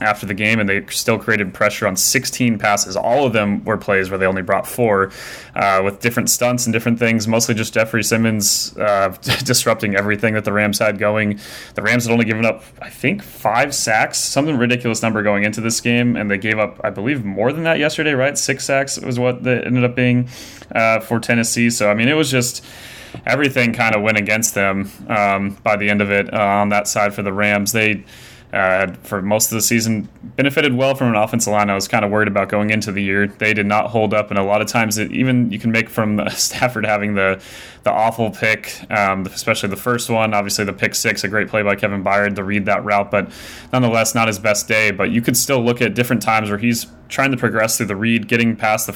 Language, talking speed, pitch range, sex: English, 235 wpm, 105-120 Hz, male